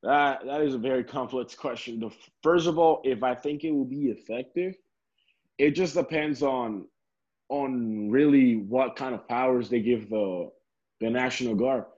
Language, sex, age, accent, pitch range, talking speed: English, male, 20-39, American, 120-150 Hz, 170 wpm